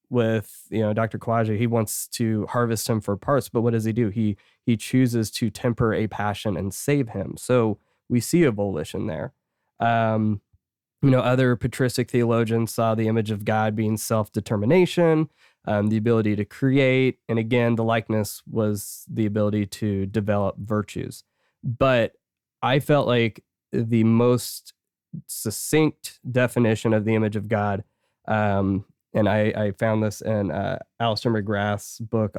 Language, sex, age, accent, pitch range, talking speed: English, male, 20-39, American, 105-125 Hz, 155 wpm